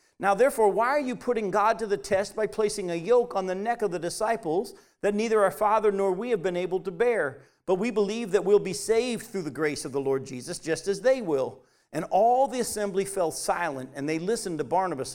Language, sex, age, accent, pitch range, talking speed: English, male, 50-69, American, 175-220 Hz, 240 wpm